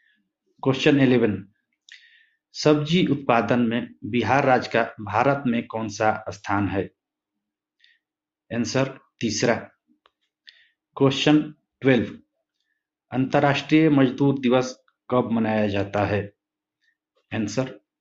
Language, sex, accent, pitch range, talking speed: Hindi, male, native, 115-150 Hz, 85 wpm